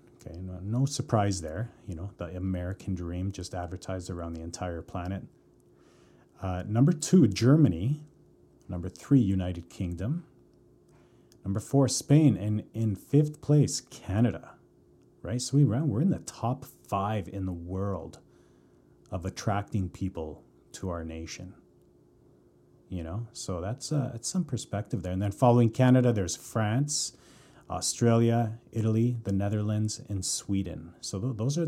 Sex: male